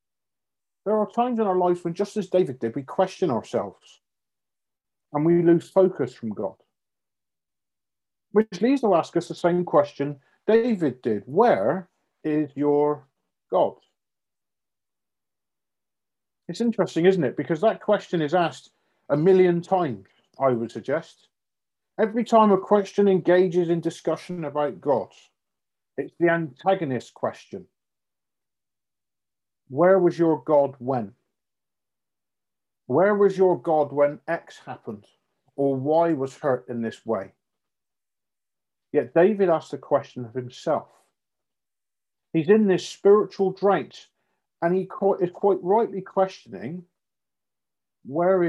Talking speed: 125 wpm